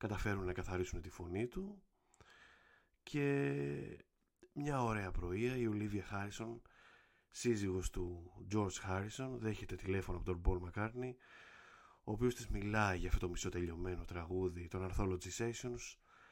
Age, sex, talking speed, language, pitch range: 20-39, male, 130 wpm, Greek, 90-120 Hz